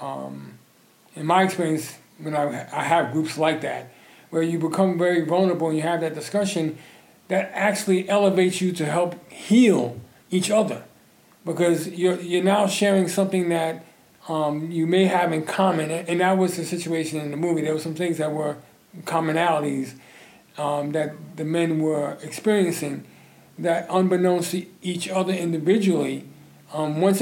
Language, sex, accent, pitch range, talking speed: English, male, American, 160-185 Hz, 160 wpm